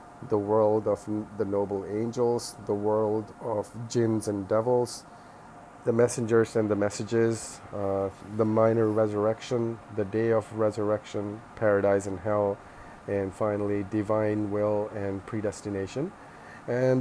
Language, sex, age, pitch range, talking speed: English, male, 30-49, 100-115 Hz, 125 wpm